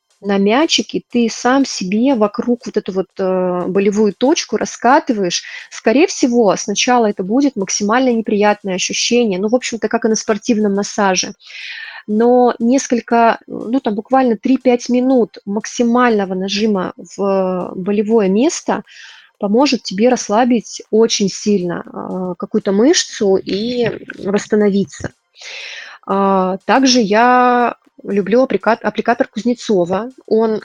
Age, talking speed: 20-39, 110 wpm